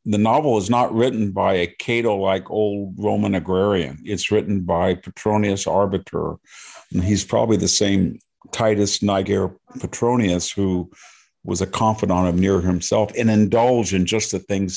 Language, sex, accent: English, male, American